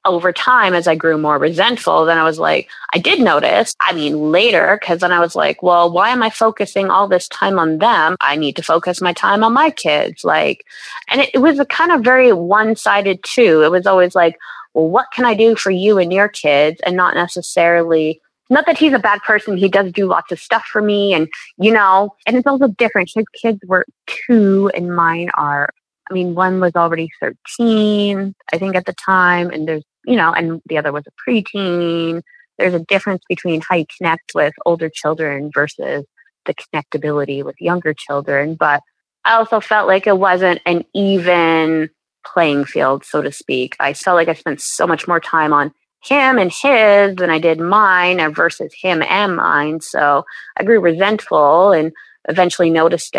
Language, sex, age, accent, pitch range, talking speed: English, female, 20-39, American, 160-205 Hz, 200 wpm